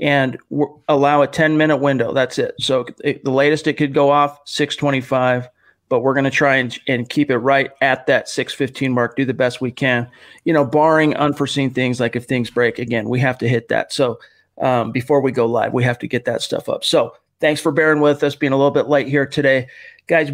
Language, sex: English, male